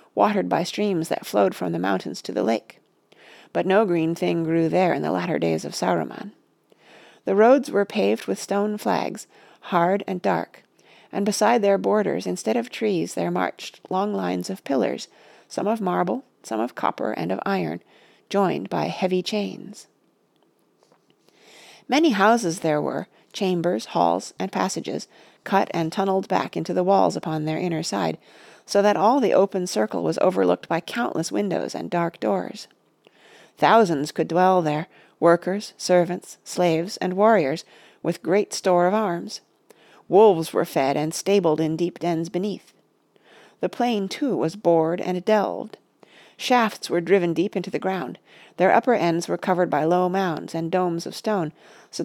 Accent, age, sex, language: American, 40-59, female, English